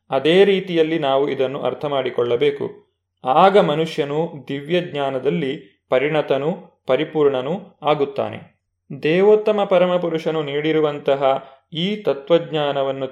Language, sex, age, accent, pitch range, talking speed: Kannada, male, 30-49, native, 140-185 Hz, 80 wpm